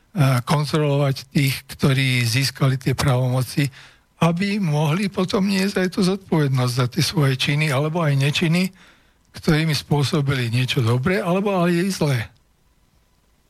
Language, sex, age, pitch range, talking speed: Slovak, male, 60-79, 130-160 Hz, 125 wpm